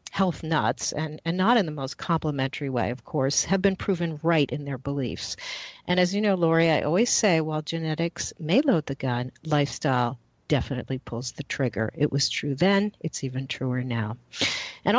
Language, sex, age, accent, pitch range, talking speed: English, female, 50-69, American, 145-195 Hz, 190 wpm